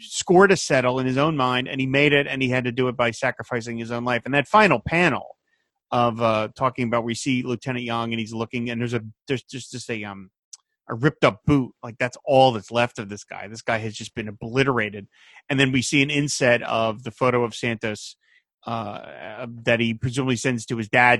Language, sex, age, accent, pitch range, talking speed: English, male, 30-49, American, 115-150 Hz, 230 wpm